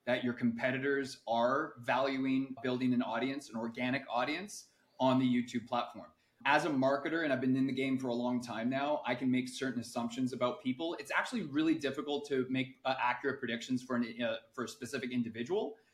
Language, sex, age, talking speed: English, male, 30-49, 195 wpm